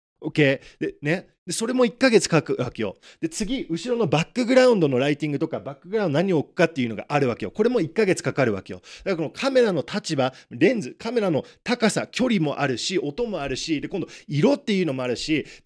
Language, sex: Japanese, male